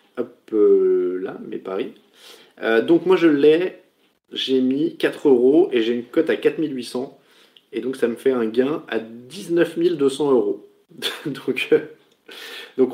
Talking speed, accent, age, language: 145 wpm, French, 20-39, French